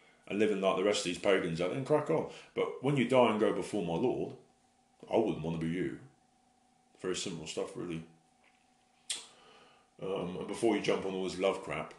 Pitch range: 85-115 Hz